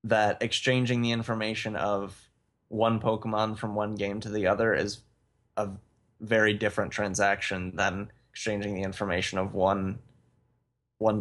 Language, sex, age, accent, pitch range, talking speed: English, male, 20-39, American, 105-120 Hz, 135 wpm